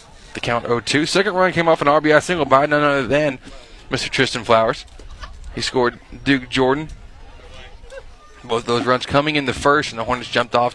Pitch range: 120-140 Hz